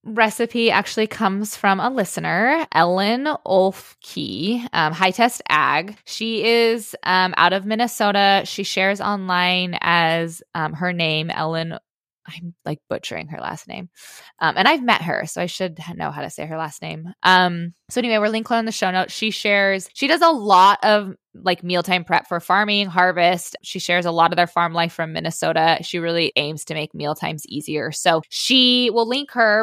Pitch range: 175-220 Hz